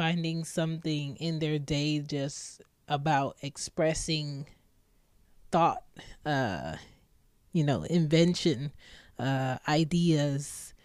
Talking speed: 85 wpm